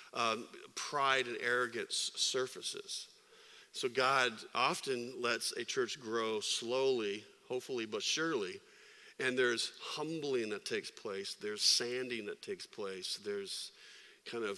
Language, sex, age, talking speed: English, male, 50-69, 125 wpm